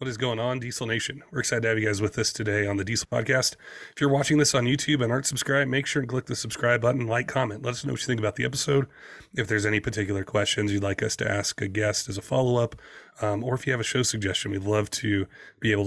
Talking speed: 280 wpm